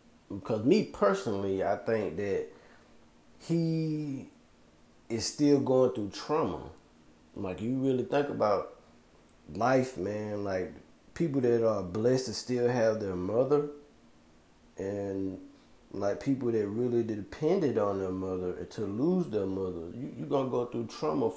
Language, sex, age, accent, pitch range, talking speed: English, male, 30-49, American, 95-130 Hz, 135 wpm